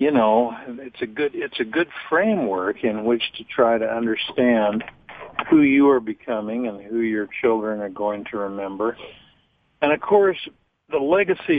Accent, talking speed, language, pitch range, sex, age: American, 165 wpm, English, 105-130 Hz, male, 50-69